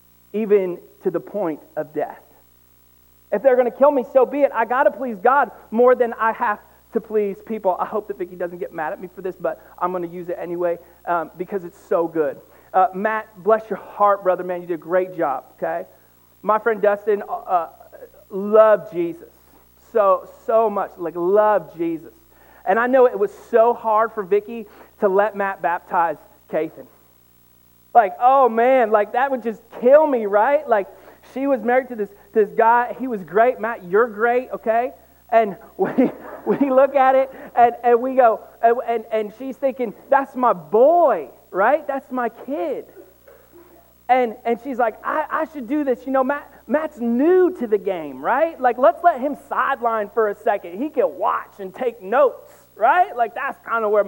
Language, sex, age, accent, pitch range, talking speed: English, male, 40-59, American, 195-260 Hz, 195 wpm